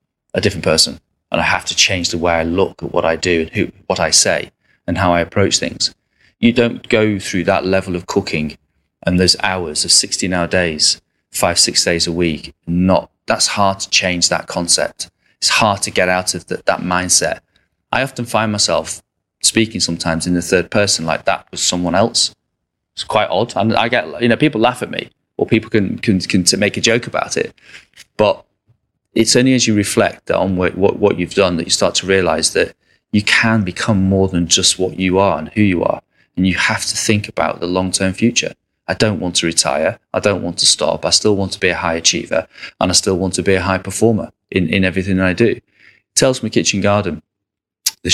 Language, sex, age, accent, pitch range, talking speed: English, male, 30-49, British, 90-105 Hz, 220 wpm